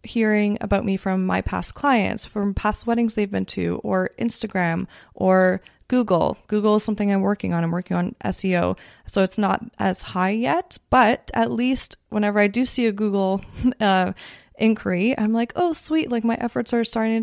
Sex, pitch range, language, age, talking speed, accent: female, 195-240 Hz, English, 20-39, 185 wpm, American